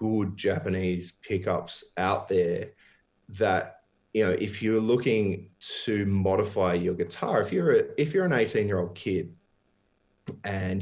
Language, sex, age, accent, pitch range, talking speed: English, male, 20-39, Australian, 90-110 Hz, 140 wpm